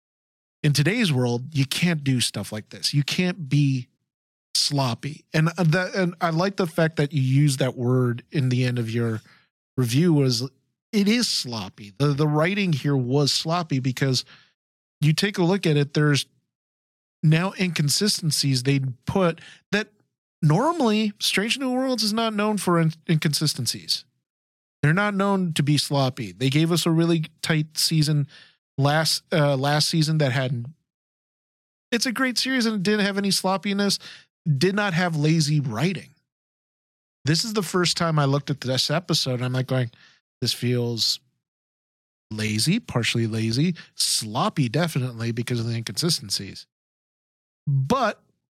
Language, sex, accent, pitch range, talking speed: English, male, American, 130-175 Hz, 155 wpm